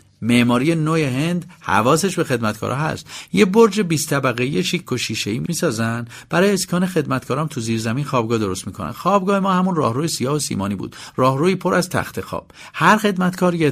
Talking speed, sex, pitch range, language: 170 wpm, male, 115-180 Hz, Persian